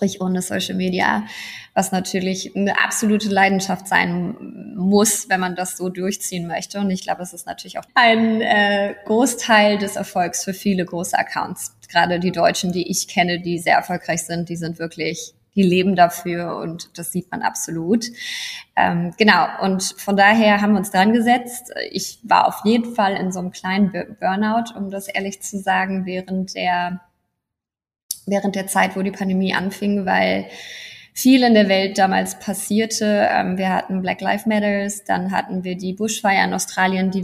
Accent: German